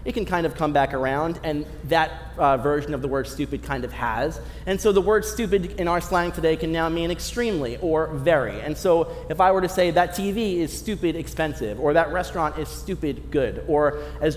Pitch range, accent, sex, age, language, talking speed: 145-205 Hz, American, male, 30-49, English, 220 wpm